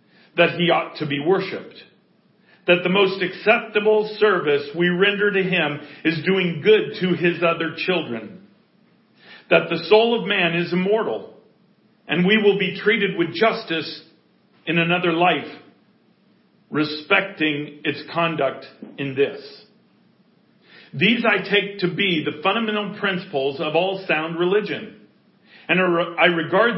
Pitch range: 165-205 Hz